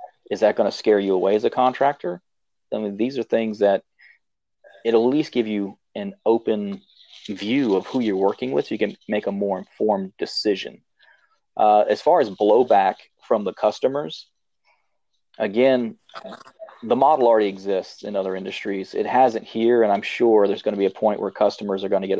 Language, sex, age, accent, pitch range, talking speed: English, male, 40-59, American, 100-115 Hz, 190 wpm